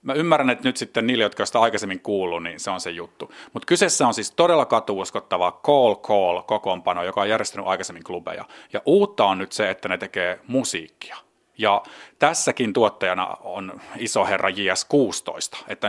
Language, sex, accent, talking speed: Finnish, male, native, 170 wpm